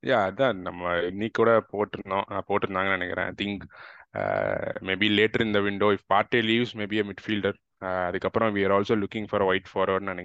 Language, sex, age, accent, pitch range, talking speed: Tamil, male, 20-39, native, 95-105 Hz, 160 wpm